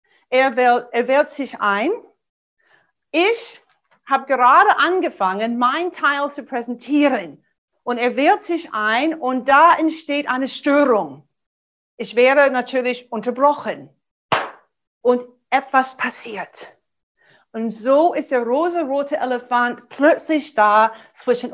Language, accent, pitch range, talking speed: German, German, 240-305 Hz, 110 wpm